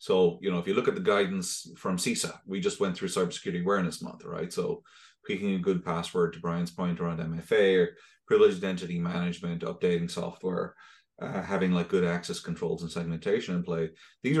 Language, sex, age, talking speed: English, male, 30-49, 190 wpm